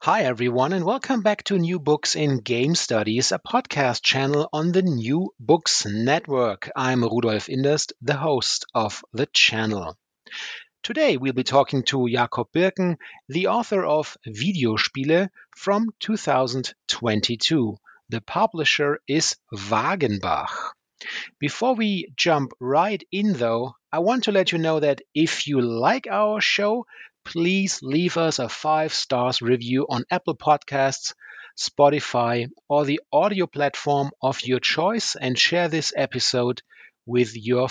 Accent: German